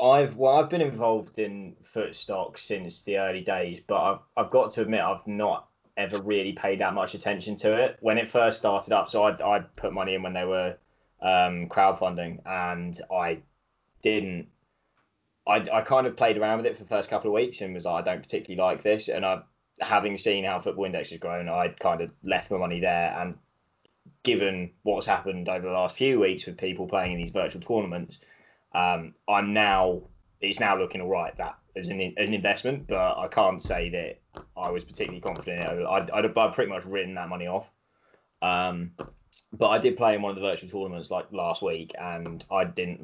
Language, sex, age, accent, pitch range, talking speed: English, male, 20-39, British, 90-100 Hz, 205 wpm